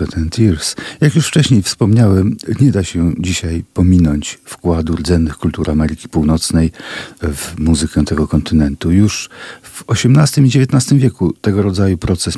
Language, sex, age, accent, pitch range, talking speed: Polish, male, 40-59, native, 85-105 Hz, 140 wpm